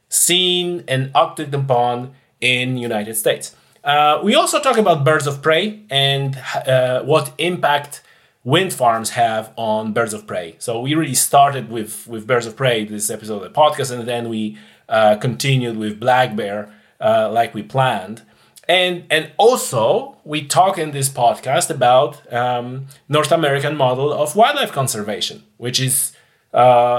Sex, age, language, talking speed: male, 30-49, English, 160 wpm